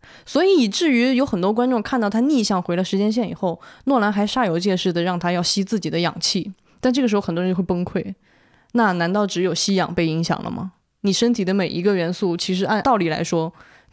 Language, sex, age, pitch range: Chinese, female, 20-39, 180-230 Hz